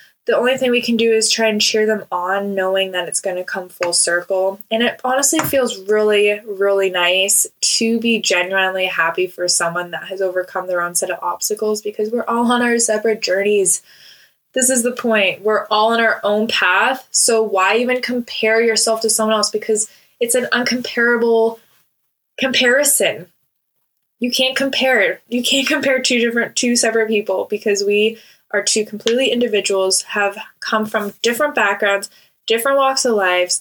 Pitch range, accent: 195-240 Hz, American